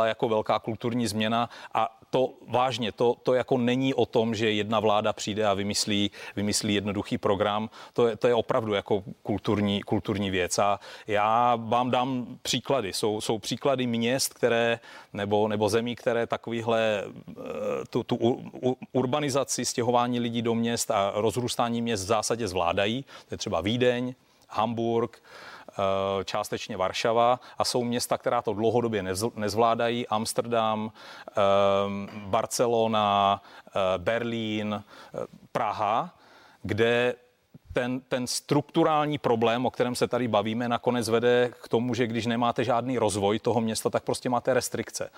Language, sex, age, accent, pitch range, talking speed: Czech, male, 30-49, native, 105-120 Hz, 140 wpm